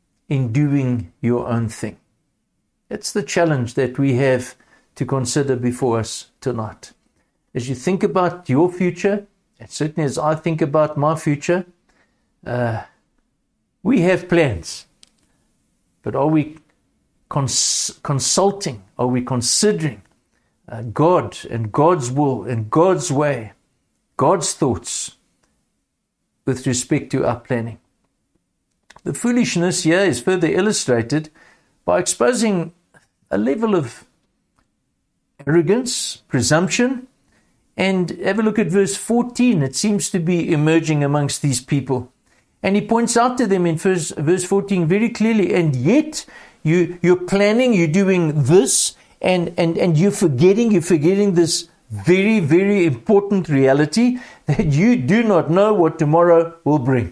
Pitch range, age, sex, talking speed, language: 135-195 Hz, 60-79, male, 130 wpm, English